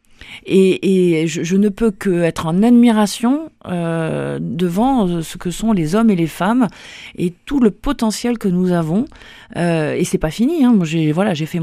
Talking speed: 190 wpm